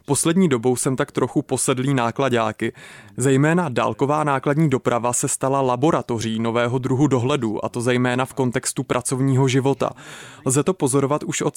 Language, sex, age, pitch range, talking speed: Czech, male, 20-39, 125-140 Hz, 150 wpm